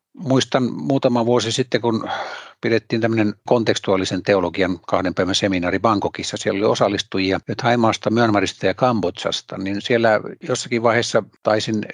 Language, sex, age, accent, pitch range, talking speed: Finnish, male, 60-79, native, 105-125 Hz, 125 wpm